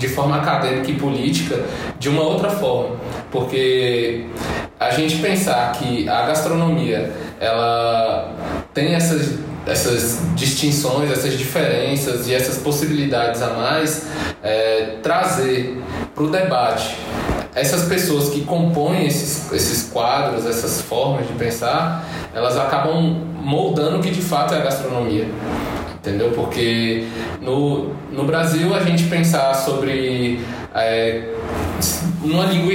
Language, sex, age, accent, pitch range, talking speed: Portuguese, male, 20-39, Brazilian, 130-175 Hz, 115 wpm